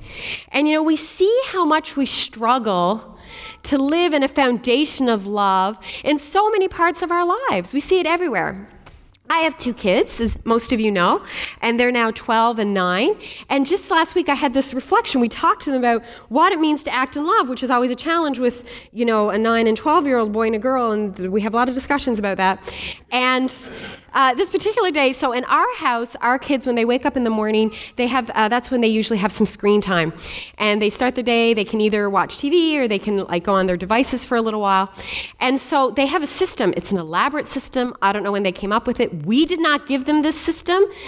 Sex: female